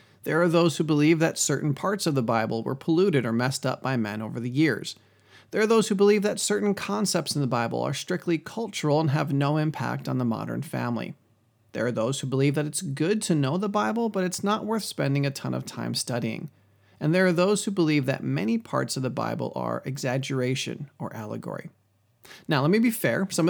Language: English